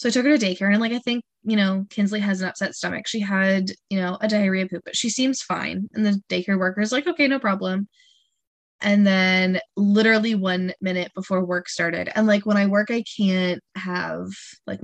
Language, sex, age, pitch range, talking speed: English, female, 10-29, 185-220 Hz, 220 wpm